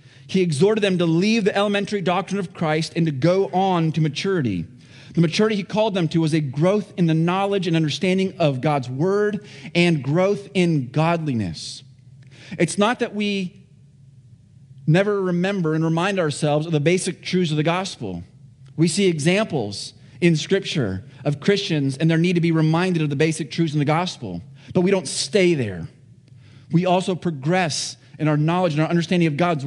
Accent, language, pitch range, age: American, English, 140-180 Hz, 30-49